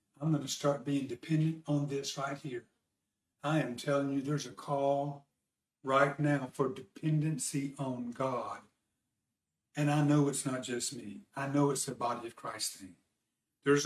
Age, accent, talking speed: 50-69, American, 170 wpm